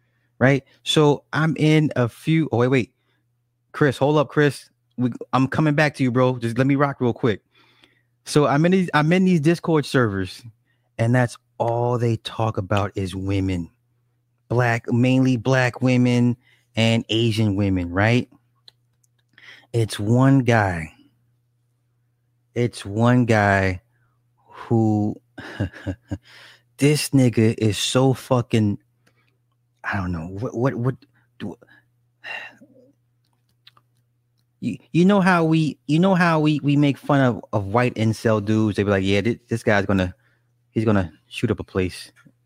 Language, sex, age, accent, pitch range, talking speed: English, male, 30-49, American, 115-130 Hz, 145 wpm